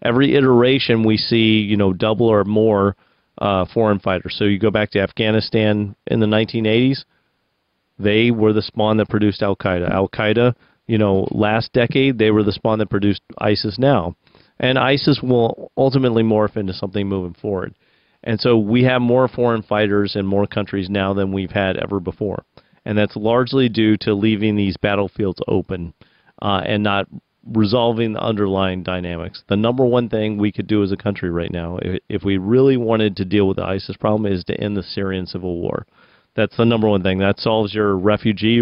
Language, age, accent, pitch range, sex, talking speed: English, 40-59, American, 100-115 Hz, male, 190 wpm